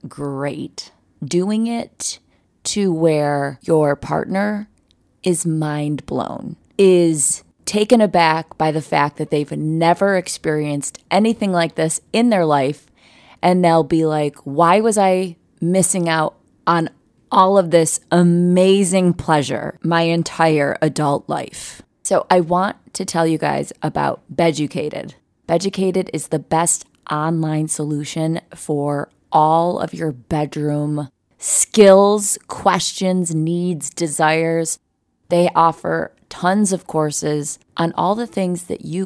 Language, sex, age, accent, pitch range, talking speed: English, female, 20-39, American, 150-185 Hz, 125 wpm